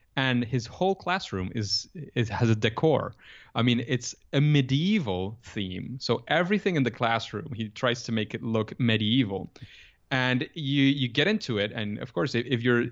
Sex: male